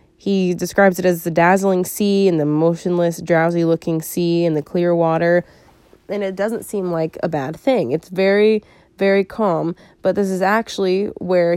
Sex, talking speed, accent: female, 170 wpm, American